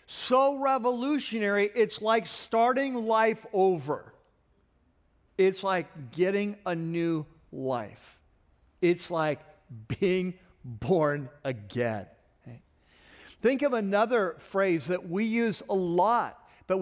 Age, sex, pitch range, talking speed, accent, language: 50-69, male, 175-225 Hz, 100 wpm, American, English